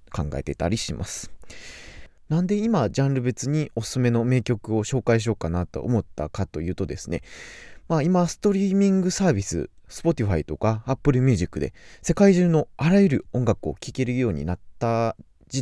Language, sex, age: Japanese, male, 20-39